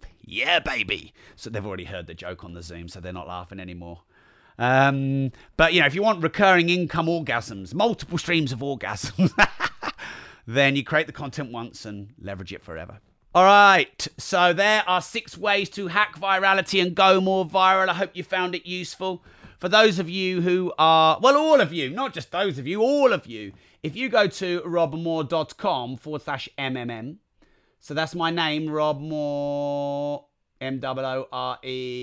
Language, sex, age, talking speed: English, male, 30-49, 170 wpm